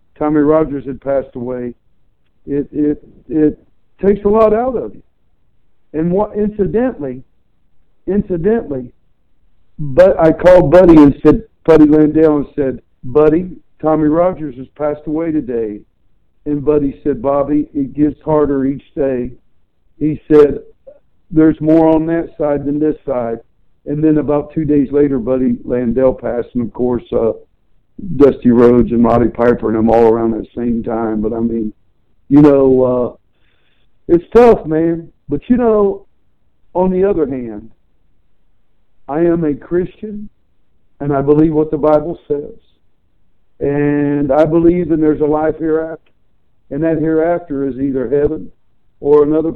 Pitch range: 125-165 Hz